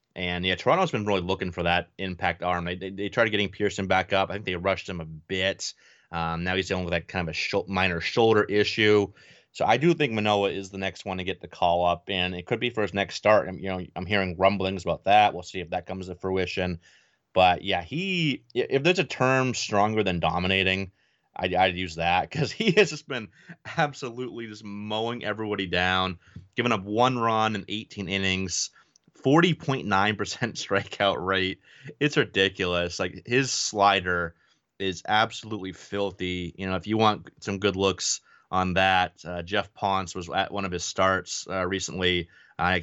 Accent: American